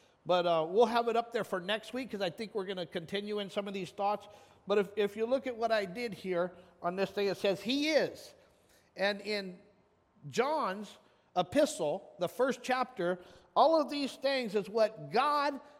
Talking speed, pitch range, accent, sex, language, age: 200 wpm, 190-255 Hz, American, male, English, 50-69